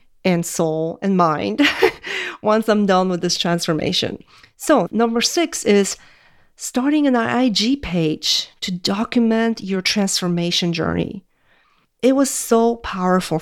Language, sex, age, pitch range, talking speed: English, female, 40-59, 190-250 Hz, 120 wpm